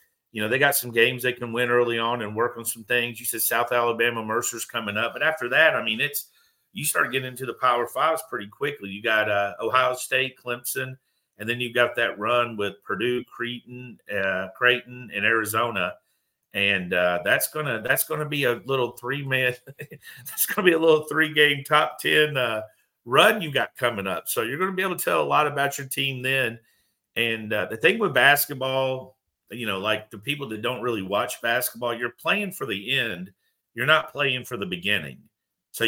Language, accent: English, American